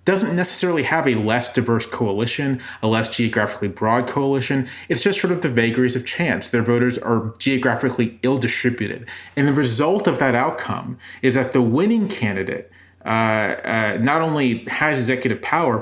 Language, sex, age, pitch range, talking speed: English, male, 30-49, 110-135 Hz, 165 wpm